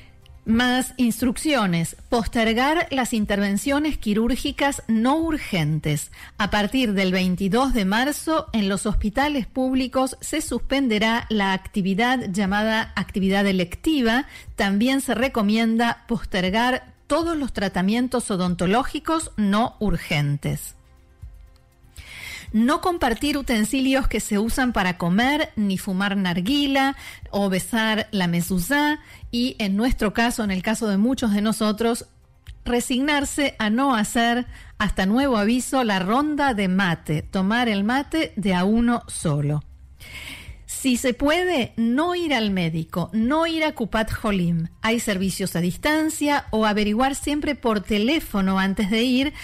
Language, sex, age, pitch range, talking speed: Spanish, female, 40-59, 200-260 Hz, 125 wpm